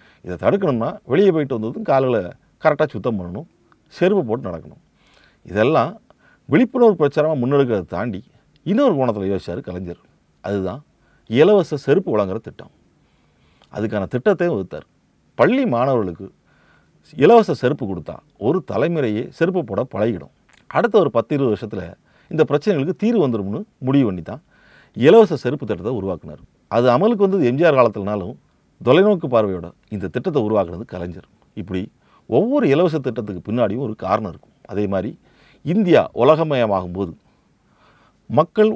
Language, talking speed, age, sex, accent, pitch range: Tamil, 115 wpm, 40-59, male, native, 100-165 Hz